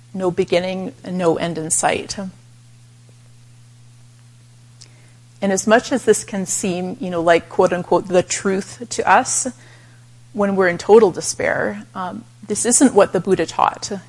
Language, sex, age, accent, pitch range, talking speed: English, female, 30-49, American, 120-200 Hz, 140 wpm